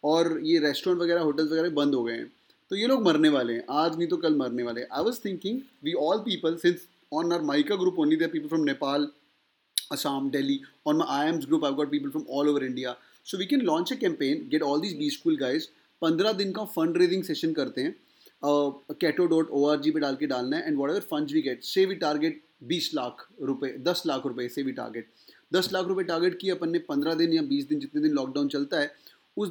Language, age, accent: English, 20-39, Indian